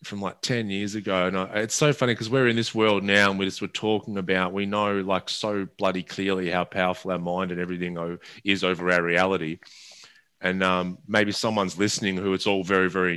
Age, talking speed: 20-39, 220 wpm